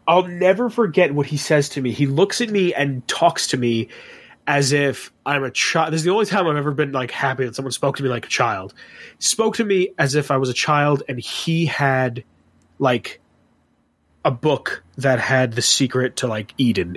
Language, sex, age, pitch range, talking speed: English, male, 30-49, 120-155 Hz, 215 wpm